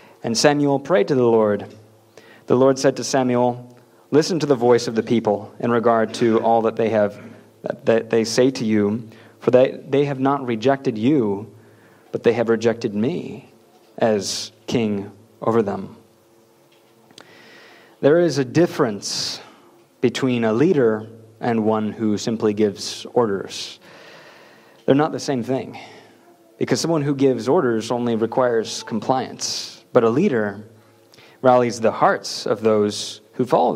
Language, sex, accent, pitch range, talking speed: English, male, American, 110-135 Hz, 145 wpm